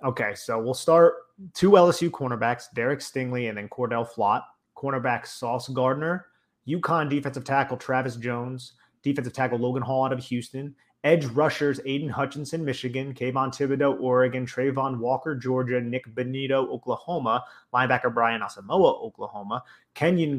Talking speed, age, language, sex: 140 wpm, 30-49, English, male